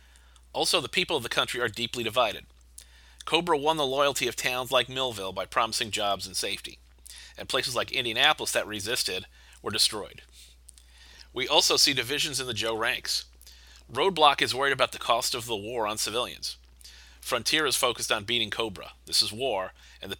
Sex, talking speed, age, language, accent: male, 180 wpm, 30-49, English, American